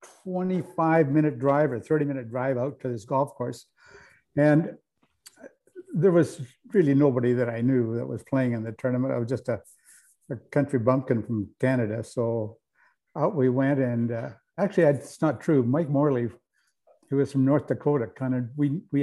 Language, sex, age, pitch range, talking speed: English, male, 60-79, 130-155 Hz, 175 wpm